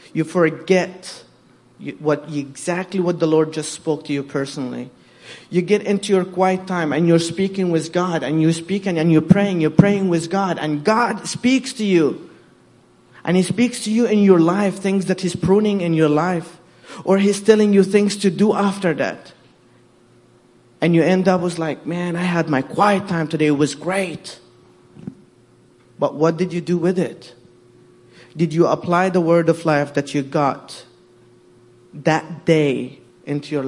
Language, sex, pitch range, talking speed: English, male, 155-190 Hz, 180 wpm